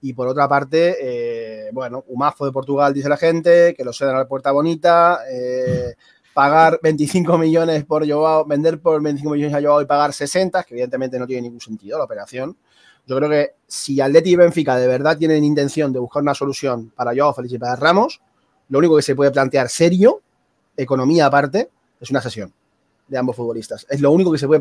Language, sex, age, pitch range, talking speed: Spanish, male, 30-49, 130-160 Hz, 205 wpm